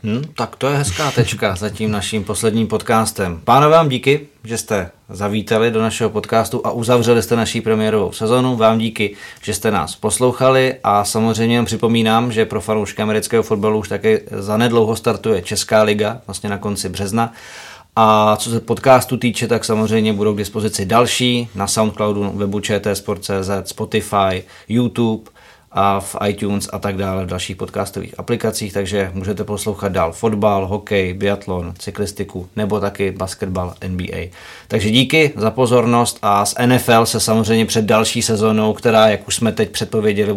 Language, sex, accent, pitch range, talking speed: Czech, male, native, 100-115 Hz, 160 wpm